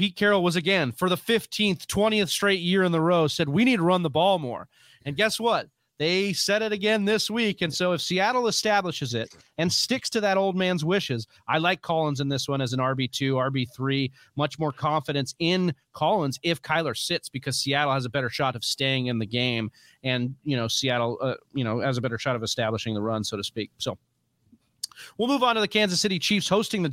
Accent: American